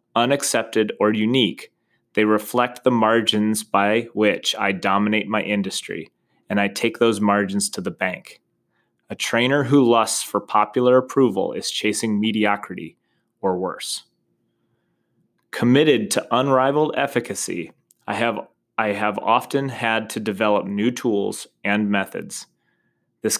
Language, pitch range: English, 105-130 Hz